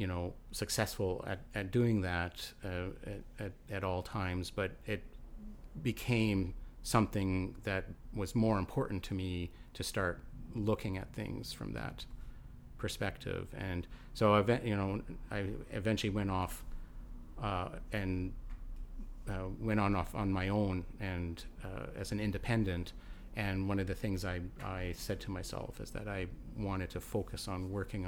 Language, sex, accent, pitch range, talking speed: English, male, American, 90-105 Hz, 155 wpm